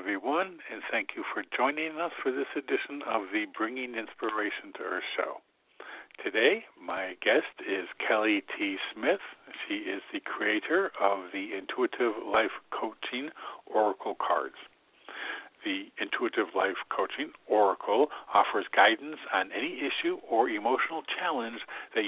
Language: English